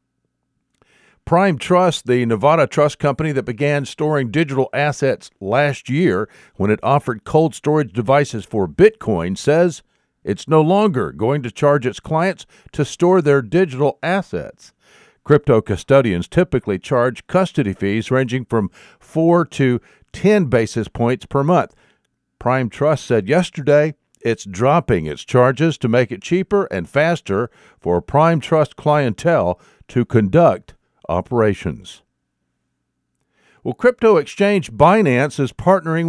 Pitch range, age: 115-165 Hz, 50-69